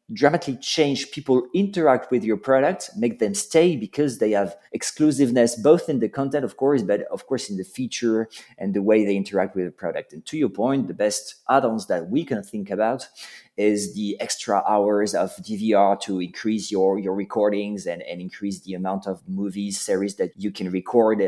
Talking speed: 195 wpm